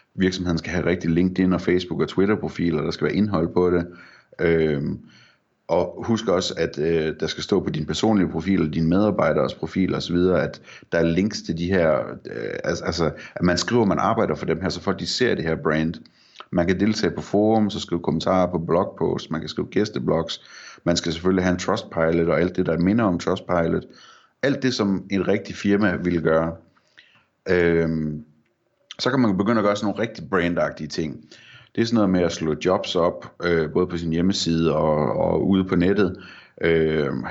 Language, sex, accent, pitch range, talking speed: Danish, male, native, 80-95 Hz, 205 wpm